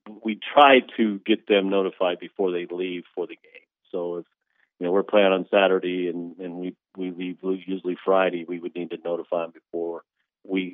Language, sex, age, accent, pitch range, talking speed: English, male, 40-59, American, 85-95 Hz, 195 wpm